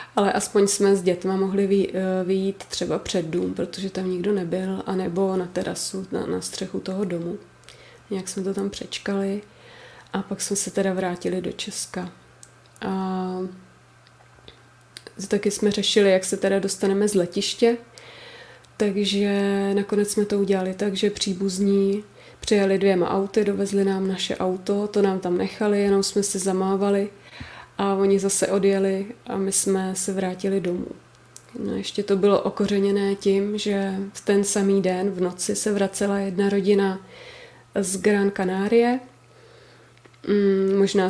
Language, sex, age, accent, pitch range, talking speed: Czech, female, 30-49, native, 190-200 Hz, 145 wpm